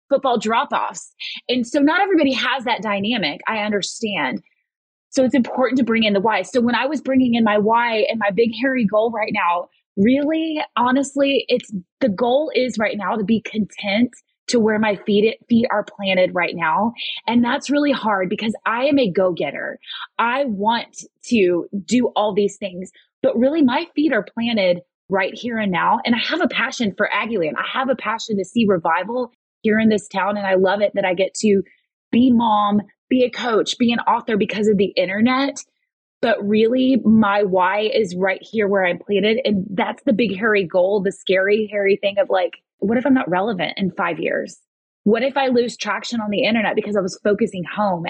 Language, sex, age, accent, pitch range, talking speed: English, female, 20-39, American, 200-250 Hz, 200 wpm